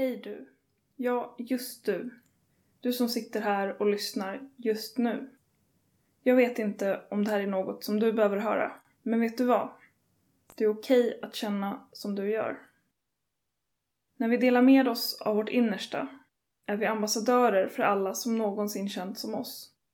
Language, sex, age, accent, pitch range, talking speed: Swedish, female, 20-39, native, 205-250 Hz, 165 wpm